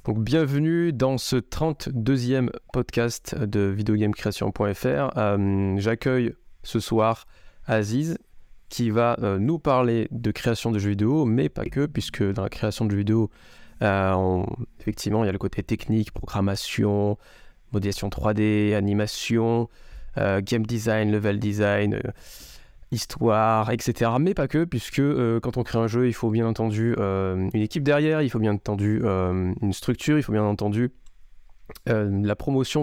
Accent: French